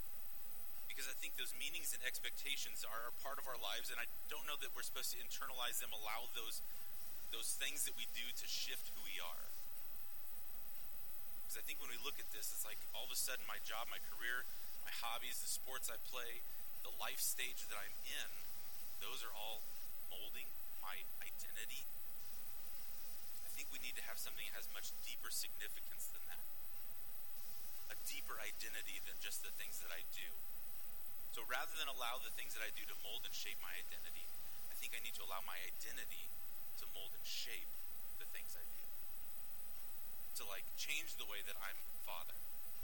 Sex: male